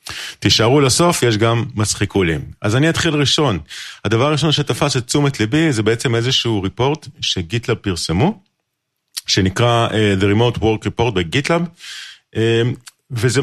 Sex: male